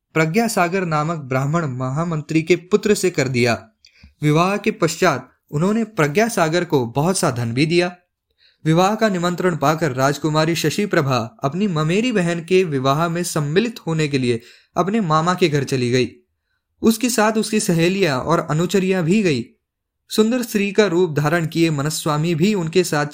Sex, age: male, 10-29